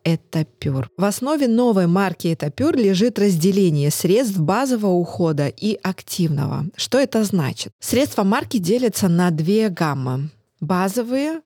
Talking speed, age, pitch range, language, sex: 120 wpm, 20-39, 165-210 Hz, Russian, female